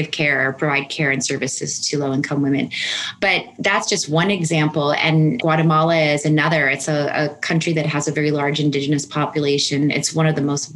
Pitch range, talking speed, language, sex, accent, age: 150-165 Hz, 190 wpm, English, female, American, 20-39